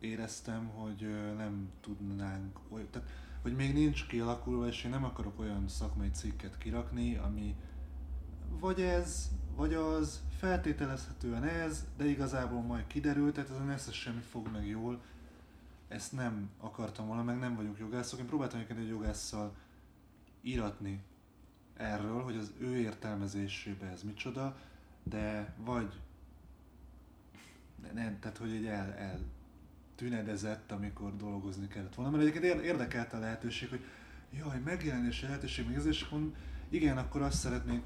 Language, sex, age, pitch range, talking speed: Hungarian, male, 20-39, 90-120 Hz, 135 wpm